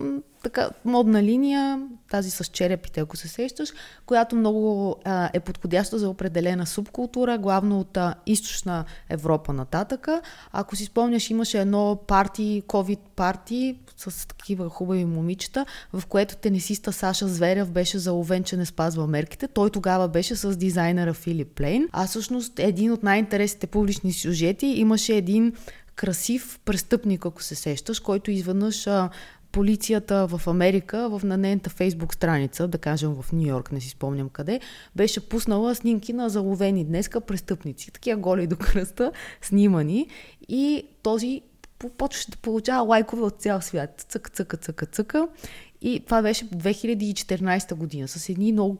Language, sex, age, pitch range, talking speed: Bulgarian, female, 20-39, 175-220 Hz, 150 wpm